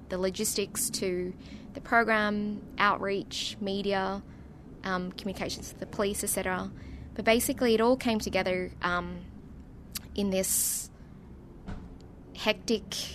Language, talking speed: English, 105 wpm